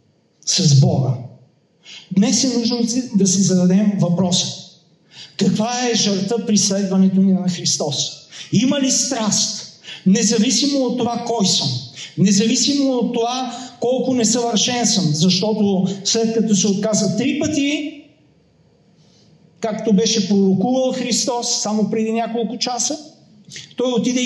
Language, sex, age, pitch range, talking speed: Bulgarian, male, 50-69, 190-250 Hz, 120 wpm